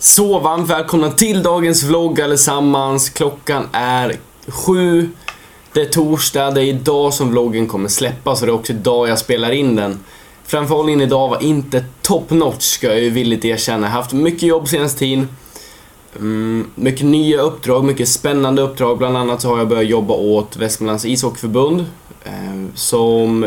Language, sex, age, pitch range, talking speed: Swedish, male, 20-39, 115-145 Hz, 165 wpm